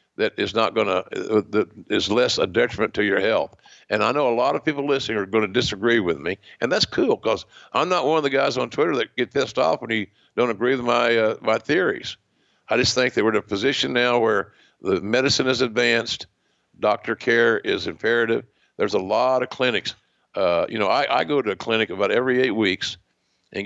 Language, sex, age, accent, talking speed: English, male, 60-79, American, 225 wpm